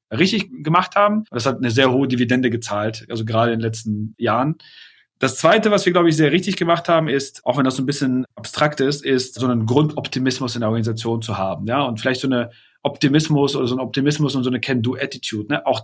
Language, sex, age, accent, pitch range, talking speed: German, male, 30-49, German, 120-155 Hz, 225 wpm